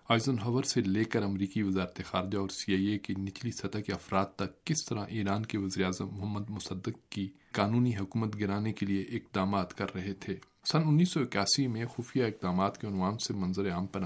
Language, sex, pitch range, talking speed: Urdu, male, 100-125 Hz, 195 wpm